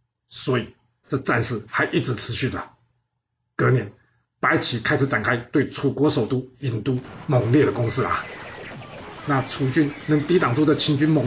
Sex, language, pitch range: male, Chinese, 120-140 Hz